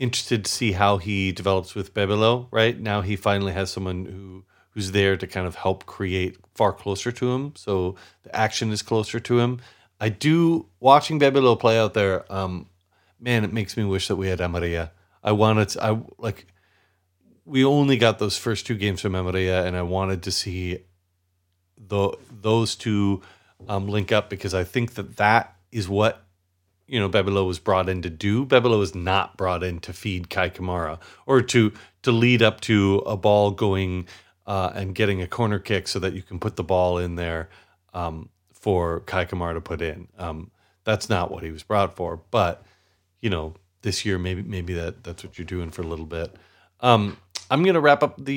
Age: 40-59